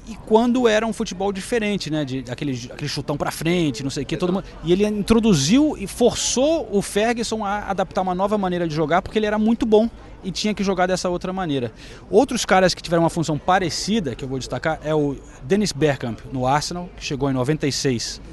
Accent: Brazilian